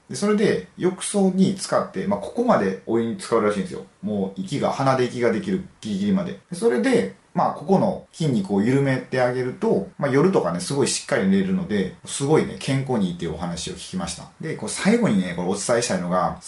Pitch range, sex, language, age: 125-195 Hz, male, Japanese, 30-49